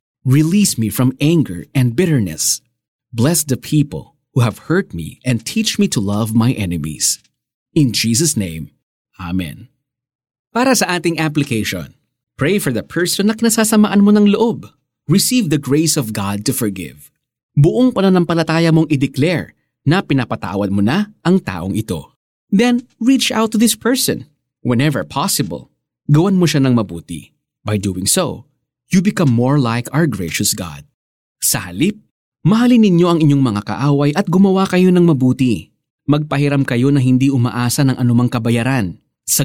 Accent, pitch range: native, 115-175 Hz